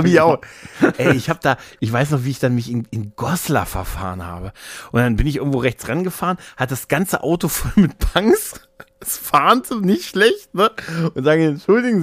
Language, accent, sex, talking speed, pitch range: German, German, male, 195 wpm, 120-155 Hz